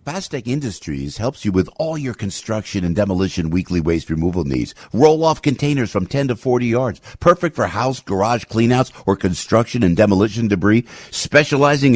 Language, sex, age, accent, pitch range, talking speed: English, male, 50-69, American, 100-145 Hz, 165 wpm